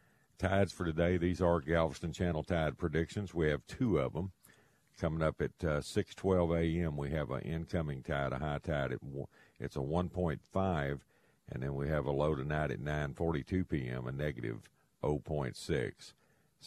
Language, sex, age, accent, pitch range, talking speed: English, male, 50-69, American, 70-90 Hz, 165 wpm